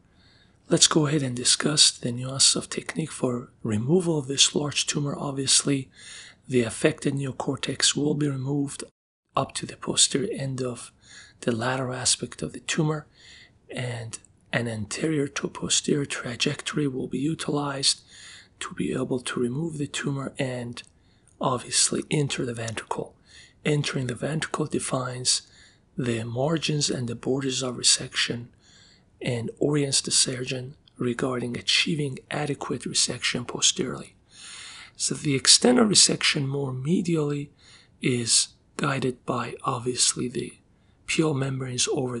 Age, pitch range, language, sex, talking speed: 40-59, 120-145 Hz, English, male, 130 wpm